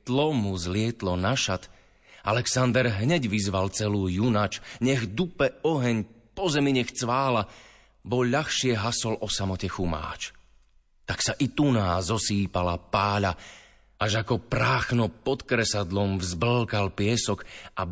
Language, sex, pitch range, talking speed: Slovak, male, 90-125 Hz, 115 wpm